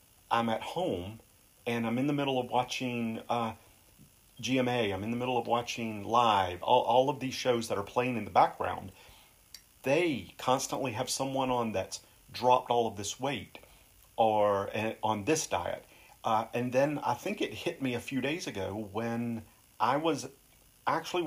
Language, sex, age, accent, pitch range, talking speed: English, male, 40-59, American, 110-130 Hz, 170 wpm